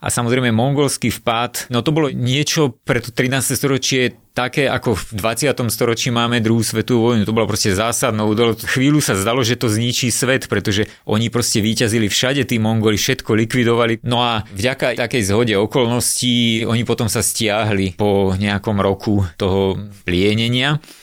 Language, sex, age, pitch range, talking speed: Slovak, male, 30-49, 105-130 Hz, 160 wpm